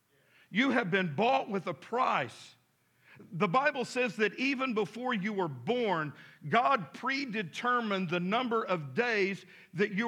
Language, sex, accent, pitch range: English, male, American, 175-235 Hz